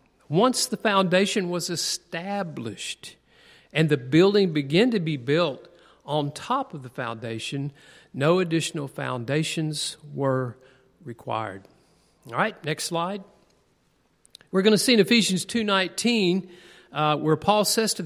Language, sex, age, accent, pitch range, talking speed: English, male, 50-69, American, 135-180 Hz, 125 wpm